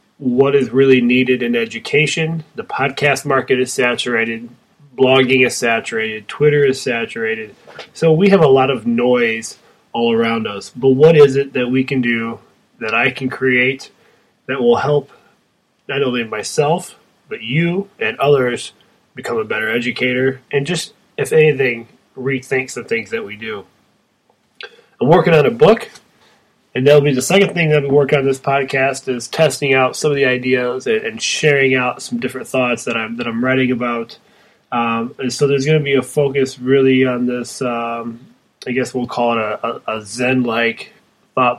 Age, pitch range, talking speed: 20-39, 120-140 Hz, 175 wpm